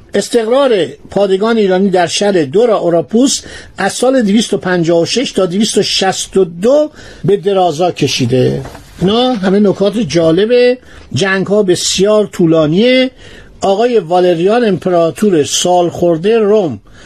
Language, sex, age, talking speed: Persian, male, 50-69, 100 wpm